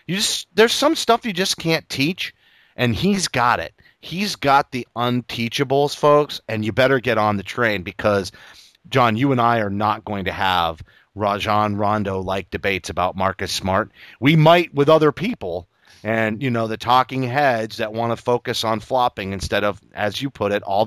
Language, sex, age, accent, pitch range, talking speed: English, male, 30-49, American, 110-165 Hz, 185 wpm